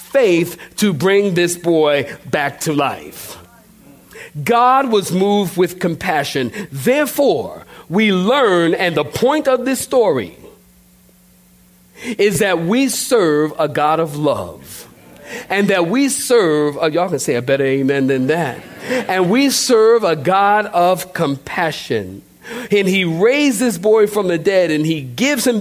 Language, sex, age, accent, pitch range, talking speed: English, male, 50-69, American, 150-220 Hz, 145 wpm